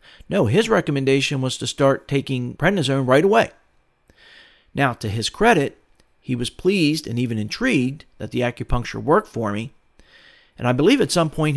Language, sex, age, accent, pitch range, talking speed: English, male, 40-59, American, 125-155 Hz, 165 wpm